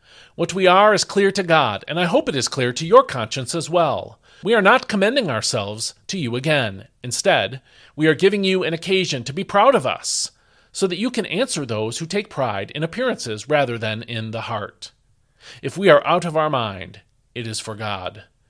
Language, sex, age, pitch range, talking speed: English, male, 40-59, 120-175 Hz, 210 wpm